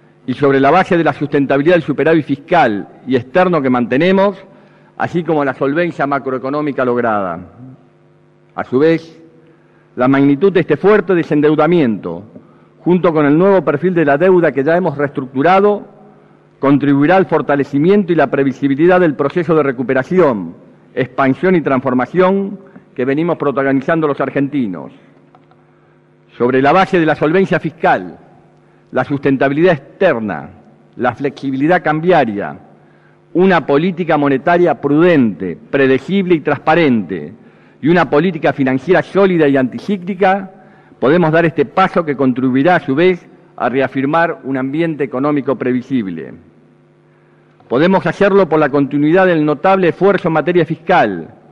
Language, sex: Spanish, male